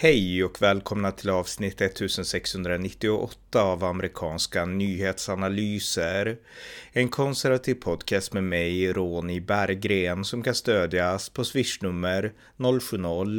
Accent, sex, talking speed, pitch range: native, male, 100 wpm, 95-120 Hz